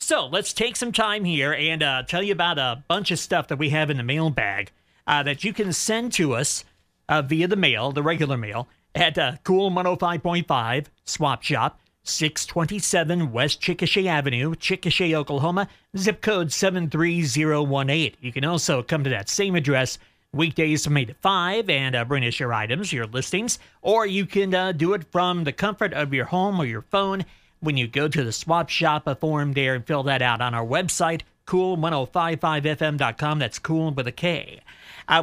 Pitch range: 135-180 Hz